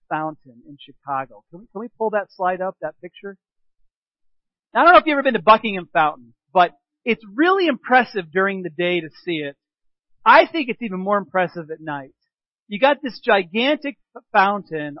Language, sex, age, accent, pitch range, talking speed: English, male, 40-59, American, 180-250 Hz, 190 wpm